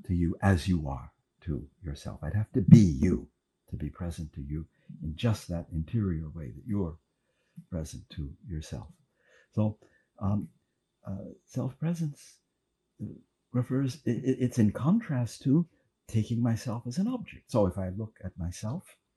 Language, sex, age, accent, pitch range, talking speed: English, male, 60-79, American, 95-130 Hz, 150 wpm